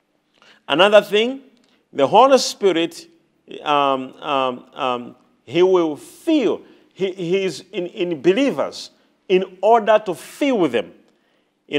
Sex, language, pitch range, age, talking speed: male, English, 160-230 Hz, 50-69, 115 wpm